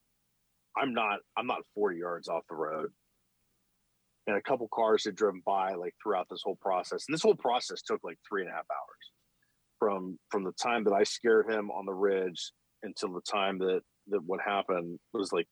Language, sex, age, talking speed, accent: English, male, 40-59, 200 wpm, American